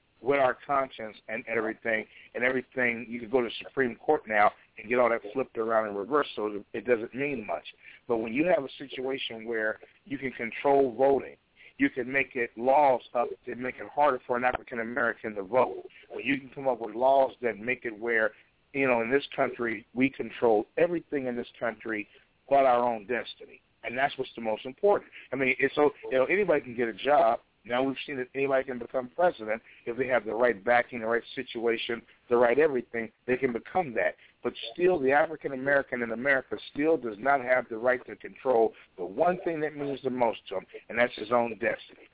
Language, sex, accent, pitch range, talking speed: English, male, American, 115-140 Hz, 210 wpm